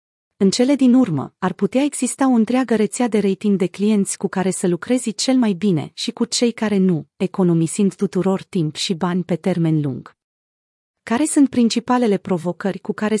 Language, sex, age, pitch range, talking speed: Romanian, female, 30-49, 175-225 Hz, 180 wpm